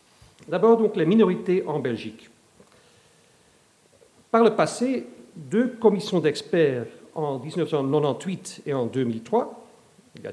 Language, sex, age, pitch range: French, male, 50-69, 160-220 Hz